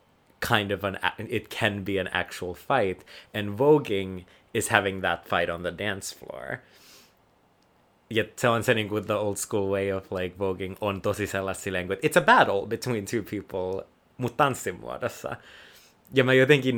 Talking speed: 160 wpm